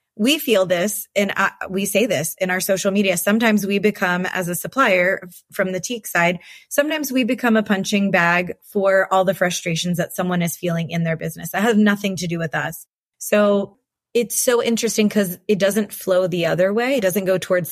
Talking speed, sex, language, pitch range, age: 210 wpm, female, English, 175-205 Hz, 20-39